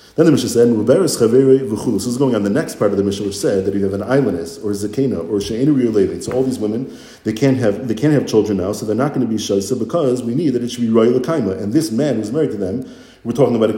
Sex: male